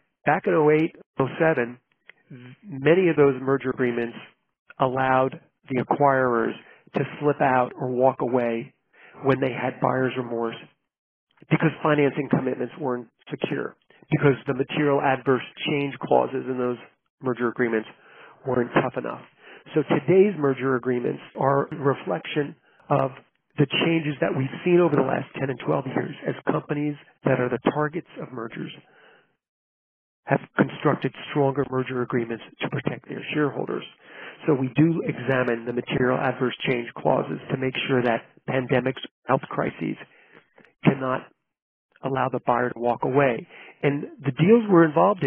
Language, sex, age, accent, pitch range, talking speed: English, male, 40-59, American, 125-150 Hz, 140 wpm